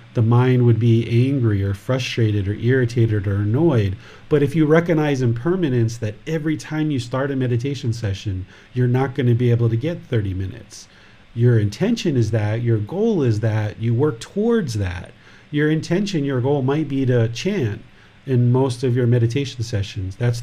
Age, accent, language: 40-59, American, English